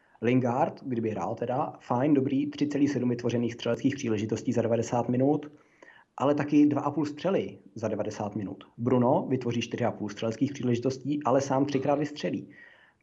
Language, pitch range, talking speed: Czech, 115-135 Hz, 135 wpm